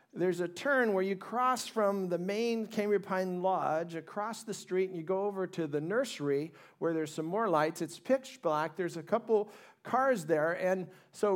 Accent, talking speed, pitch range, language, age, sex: American, 195 wpm, 170-215 Hz, English, 50-69, male